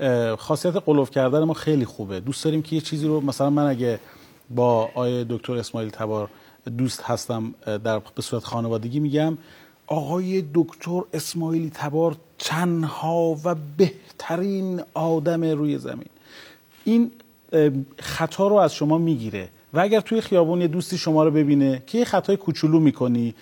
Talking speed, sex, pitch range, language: 150 wpm, male, 125-170 Hz, Persian